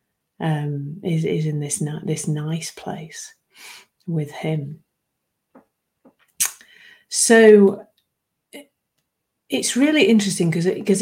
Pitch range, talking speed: 155-195 Hz, 85 wpm